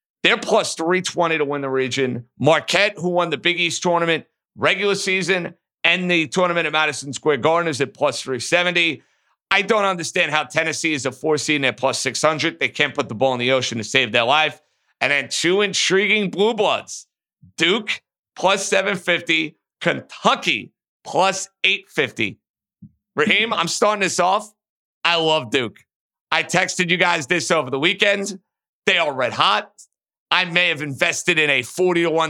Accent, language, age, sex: American, English, 50-69, male